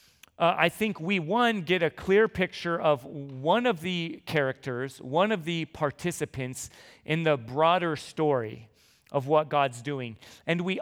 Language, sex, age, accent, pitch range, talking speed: English, male, 40-59, American, 145-185 Hz, 155 wpm